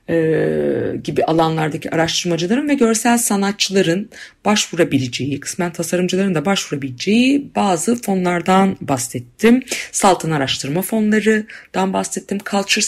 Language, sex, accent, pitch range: Turkish, female, native, 140-195 Hz